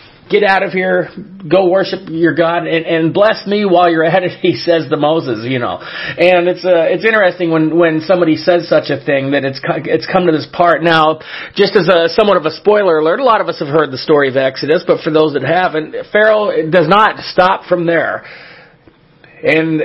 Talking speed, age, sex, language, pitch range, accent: 220 wpm, 40-59, male, English, 155-185 Hz, American